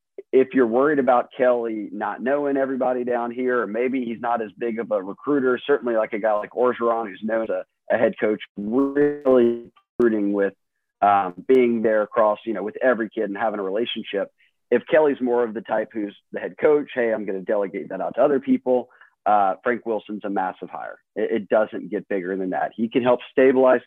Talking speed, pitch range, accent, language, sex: 210 wpm, 100-125 Hz, American, English, male